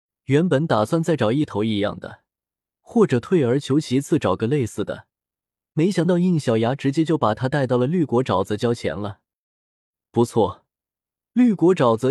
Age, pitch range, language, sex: 20-39, 110-165 Hz, Chinese, male